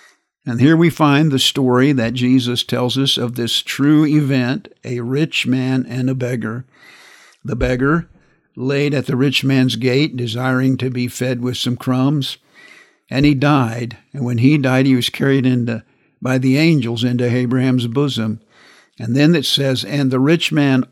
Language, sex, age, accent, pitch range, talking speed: English, male, 50-69, American, 120-140 Hz, 170 wpm